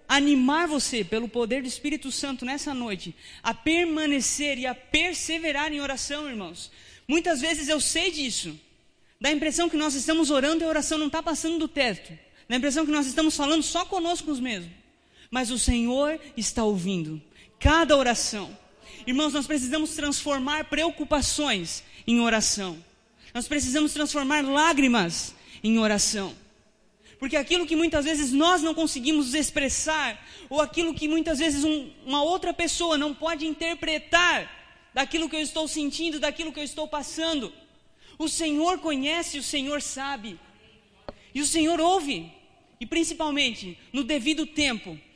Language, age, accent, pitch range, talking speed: Portuguese, 20-39, Brazilian, 255-315 Hz, 150 wpm